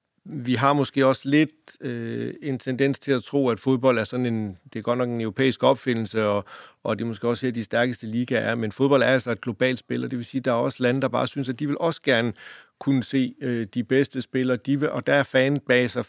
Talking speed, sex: 260 wpm, male